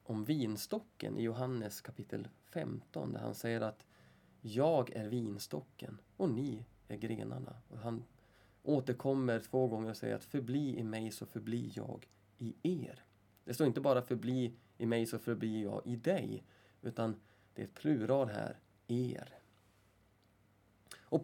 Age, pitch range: 20-39, 110-145 Hz